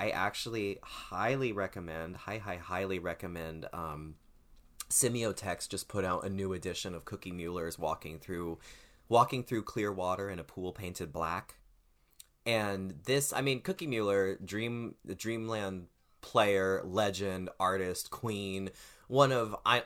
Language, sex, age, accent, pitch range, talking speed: English, male, 20-39, American, 80-110 Hz, 140 wpm